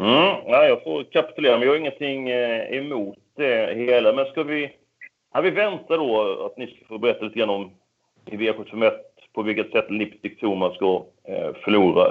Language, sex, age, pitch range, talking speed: Swedish, male, 40-59, 110-175 Hz, 185 wpm